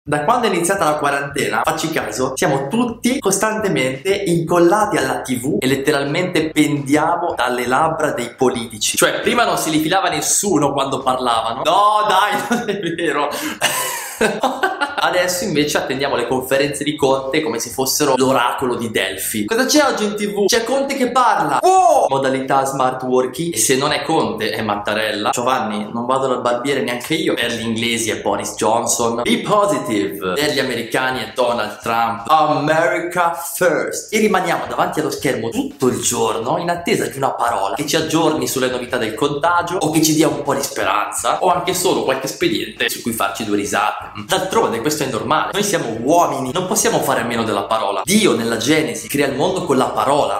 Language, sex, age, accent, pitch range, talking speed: Italian, male, 20-39, native, 125-175 Hz, 180 wpm